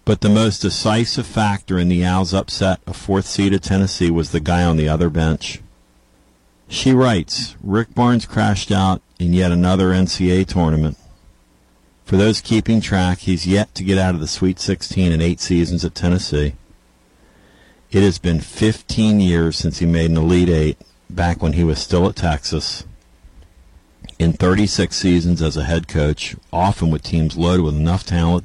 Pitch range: 80-95 Hz